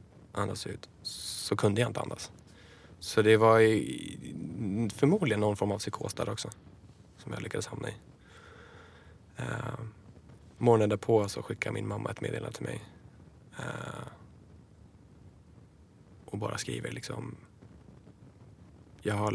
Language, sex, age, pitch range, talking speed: English, male, 20-39, 95-115 Hz, 120 wpm